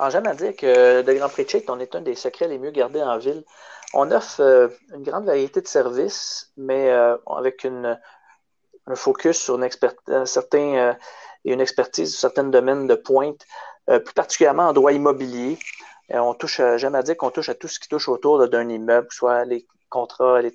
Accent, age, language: Canadian, 40-59, French